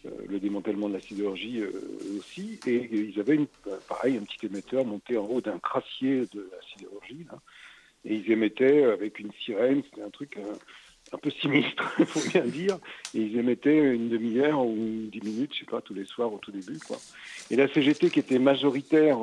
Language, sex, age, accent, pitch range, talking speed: French, male, 60-79, French, 110-150 Hz, 195 wpm